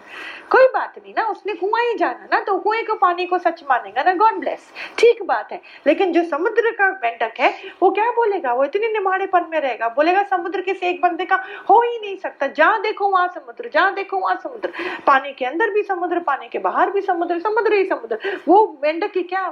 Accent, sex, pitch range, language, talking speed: native, female, 280-380 Hz, Hindi, 195 wpm